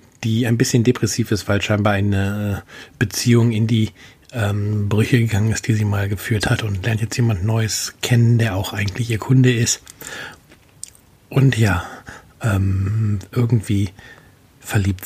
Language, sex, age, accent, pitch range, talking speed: German, male, 50-69, German, 100-120 Hz, 150 wpm